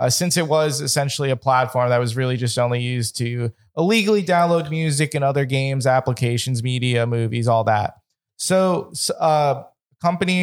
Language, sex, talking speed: English, male, 165 wpm